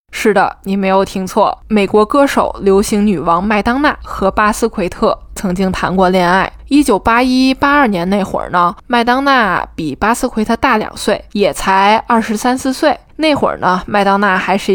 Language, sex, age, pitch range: Chinese, female, 20-39, 190-230 Hz